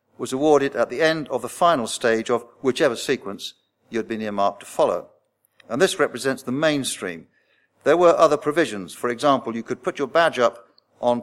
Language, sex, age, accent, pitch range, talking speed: English, male, 50-69, British, 120-150 Hz, 185 wpm